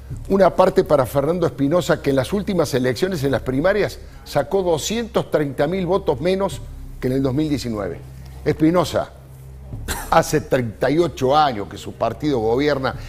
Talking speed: 135 wpm